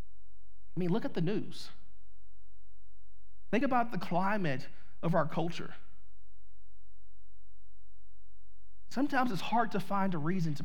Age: 40-59